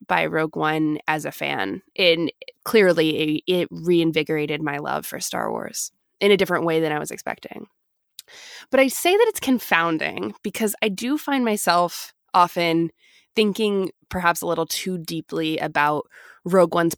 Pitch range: 160-205 Hz